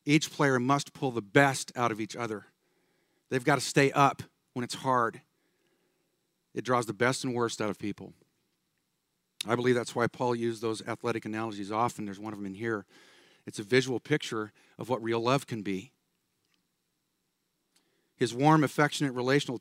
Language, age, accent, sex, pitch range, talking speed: English, 50-69, American, male, 115-140 Hz, 175 wpm